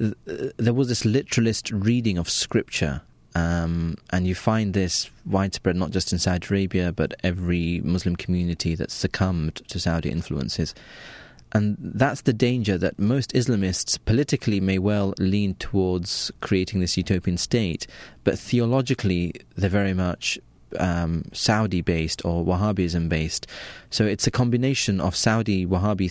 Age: 30-49